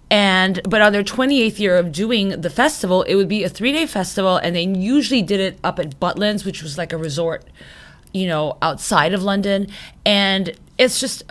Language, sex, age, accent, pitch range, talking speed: English, female, 20-39, American, 165-205 Hz, 195 wpm